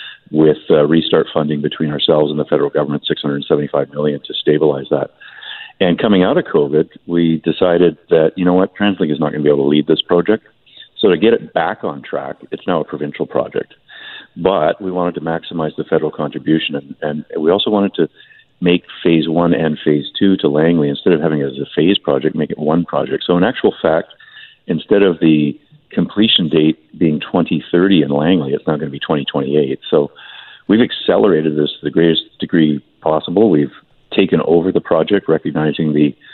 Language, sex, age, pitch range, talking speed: English, male, 50-69, 75-85 Hz, 195 wpm